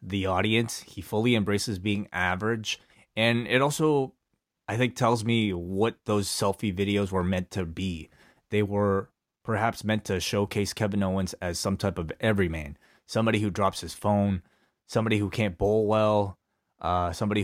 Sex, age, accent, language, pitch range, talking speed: male, 20-39, American, English, 95-110 Hz, 160 wpm